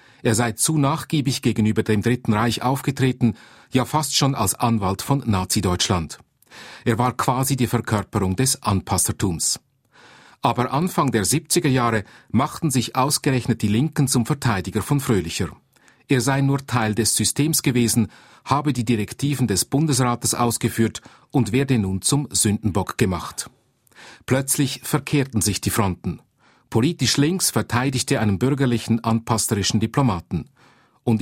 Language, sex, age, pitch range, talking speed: German, male, 40-59, 110-135 Hz, 135 wpm